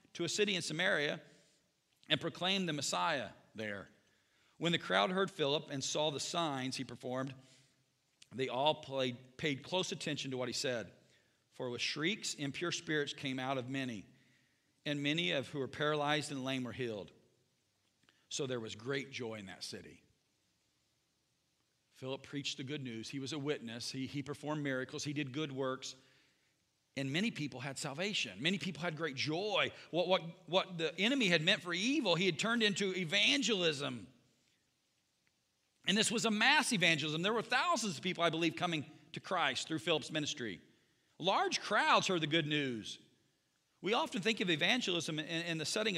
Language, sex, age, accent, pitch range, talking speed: English, male, 50-69, American, 135-190 Hz, 175 wpm